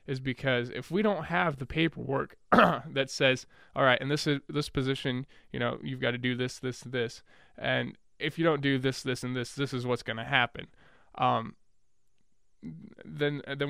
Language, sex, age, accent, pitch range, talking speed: English, male, 20-39, American, 125-145 Hz, 190 wpm